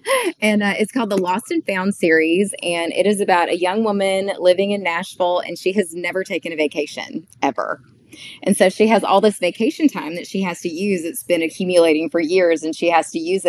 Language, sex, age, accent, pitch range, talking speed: English, female, 20-39, American, 155-190 Hz, 220 wpm